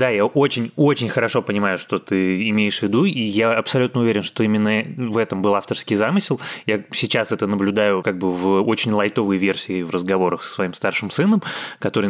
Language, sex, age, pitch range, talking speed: Russian, male, 20-39, 105-125 Hz, 190 wpm